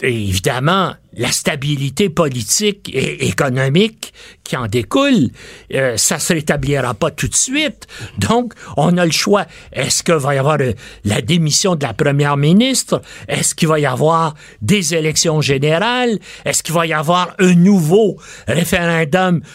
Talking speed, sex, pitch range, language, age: 155 wpm, male, 145-195 Hz, French, 60-79